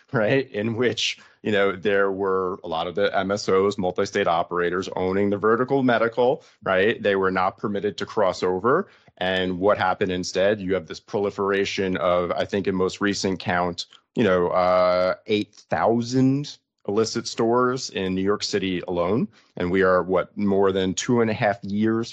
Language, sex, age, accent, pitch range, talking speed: English, male, 30-49, American, 95-110 Hz, 175 wpm